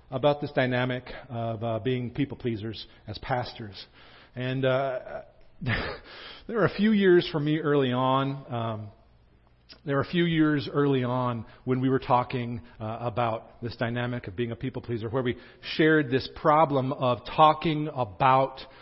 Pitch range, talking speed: 125-160 Hz, 155 wpm